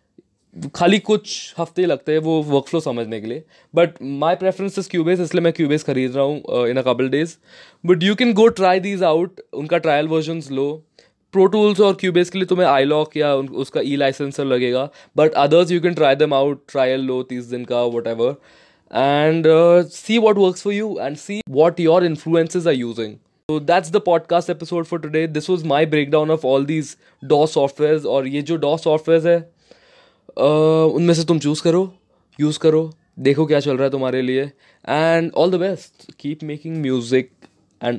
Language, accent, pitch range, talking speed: Hindi, native, 135-170 Hz, 190 wpm